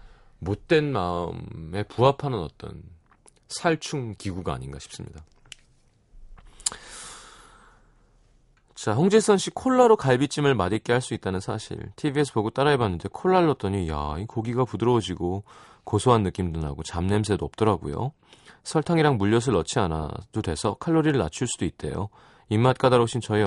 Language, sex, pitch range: Korean, male, 90-135 Hz